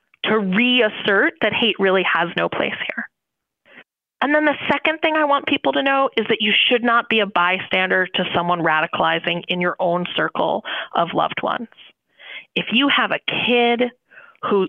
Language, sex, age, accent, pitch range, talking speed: English, female, 30-49, American, 185-245 Hz, 175 wpm